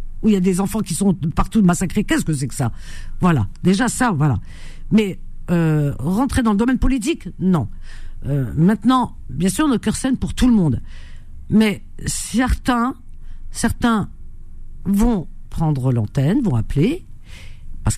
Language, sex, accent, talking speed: French, female, French, 155 wpm